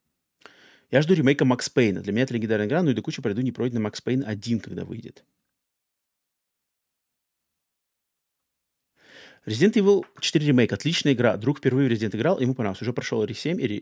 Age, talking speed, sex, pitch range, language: 30-49, 175 wpm, male, 120-150 Hz, Russian